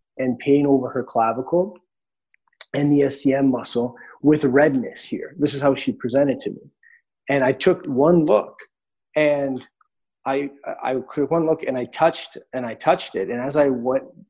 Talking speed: 170 wpm